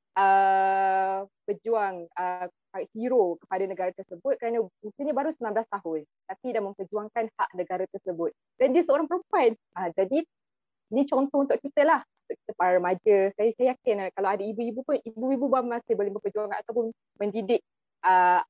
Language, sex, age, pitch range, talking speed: Malay, female, 20-39, 185-235 Hz, 150 wpm